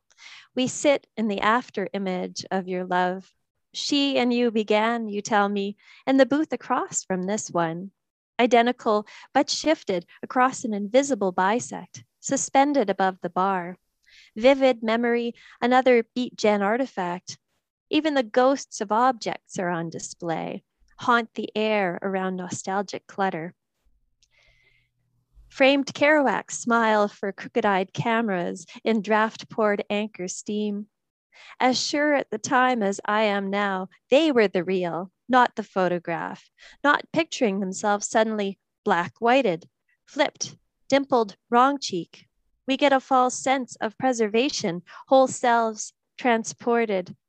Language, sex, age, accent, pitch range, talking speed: English, female, 30-49, American, 190-255 Hz, 125 wpm